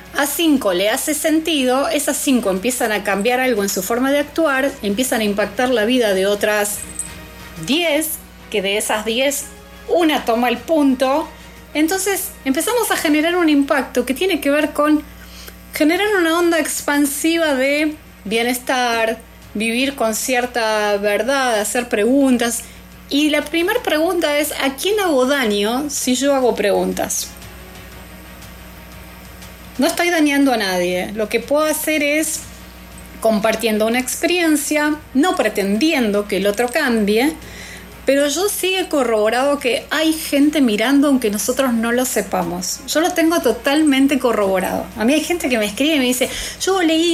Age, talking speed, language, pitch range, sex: 30-49, 150 wpm, Spanish, 225-310 Hz, female